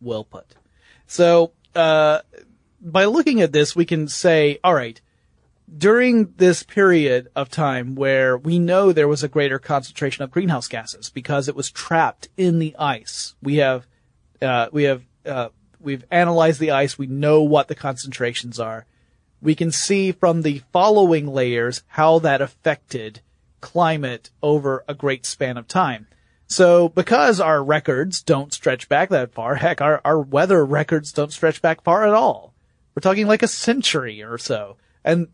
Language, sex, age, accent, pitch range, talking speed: English, male, 30-49, American, 130-170 Hz, 165 wpm